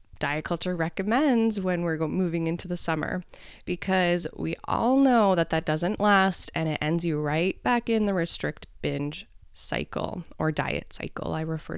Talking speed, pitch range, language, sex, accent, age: 170 wpm, 165-210 Hz, English, female, American, 20-39